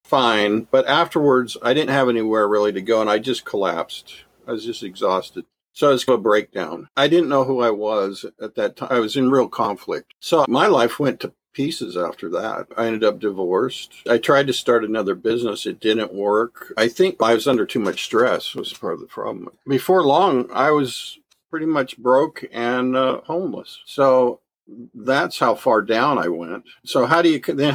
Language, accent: English, American